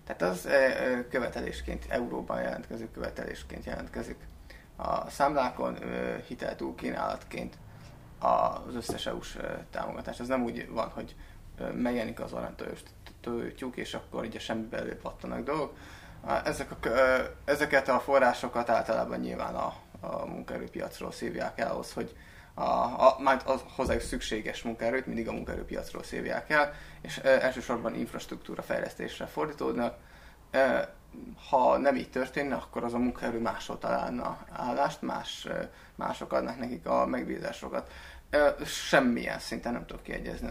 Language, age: Hungarian, 20-39